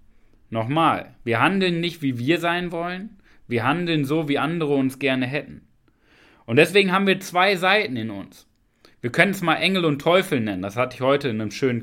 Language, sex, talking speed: German, male, 200 wpm